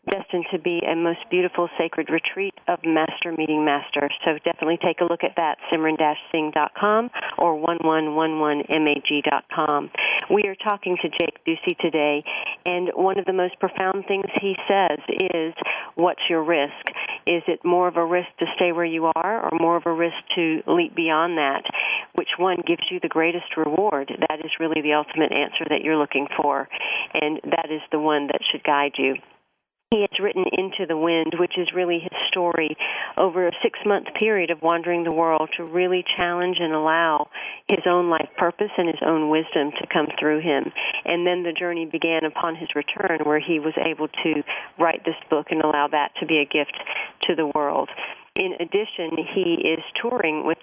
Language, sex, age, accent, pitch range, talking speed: English, female, 50-69, American, 155-180 Hz, 185 wpm